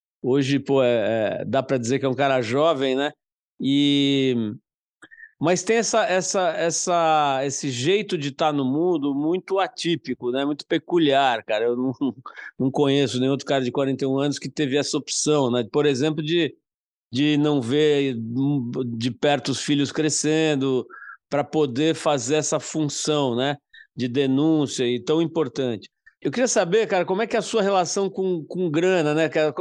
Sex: male